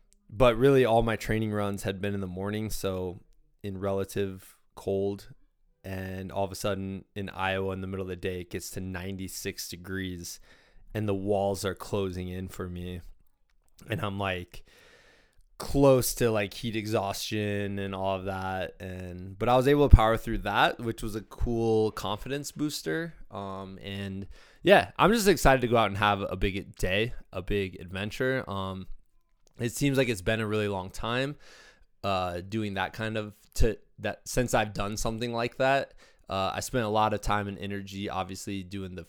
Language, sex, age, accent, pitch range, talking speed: English, male, 20-39, American, 95-110 Hz, 185 wpm